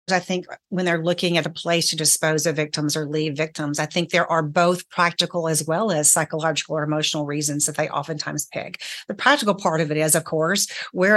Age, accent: 40-59, American